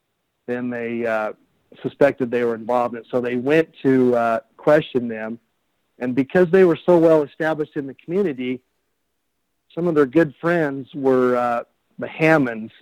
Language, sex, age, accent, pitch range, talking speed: English, male, 50-69, American, 120-140 Hz, 155 wpm